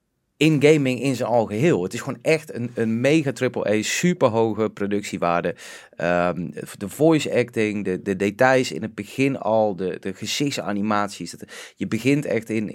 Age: 30-49